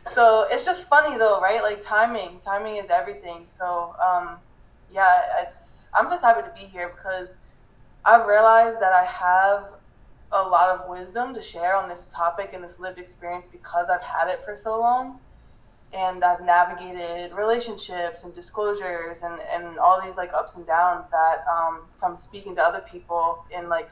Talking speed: 175 wpm